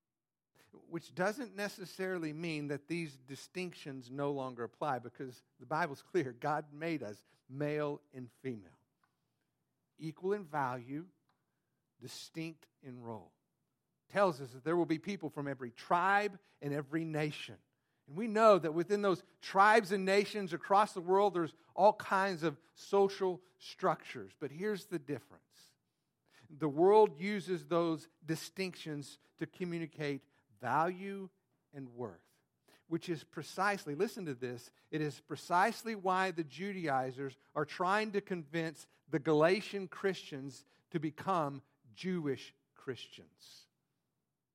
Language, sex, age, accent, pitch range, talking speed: English, male, 50-69, American, 140-185 Hz, 125 wpm